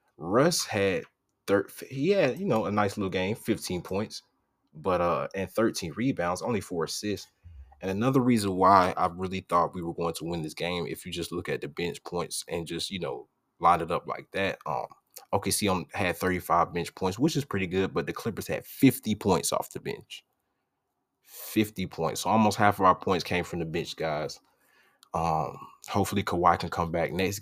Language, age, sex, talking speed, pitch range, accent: English, 20-39, male, 200 wpm, 85-100 Hz, American